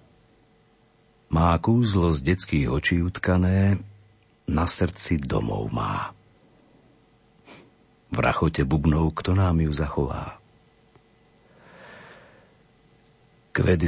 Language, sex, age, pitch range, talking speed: Slovak, male, 50-69, 80-100 Hz, 80 wpm